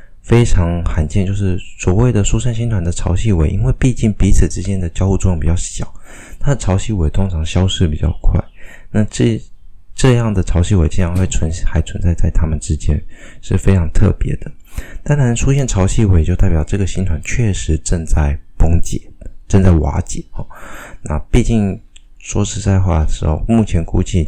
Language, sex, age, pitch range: Chinese, male, 20-39, 80-100 Hz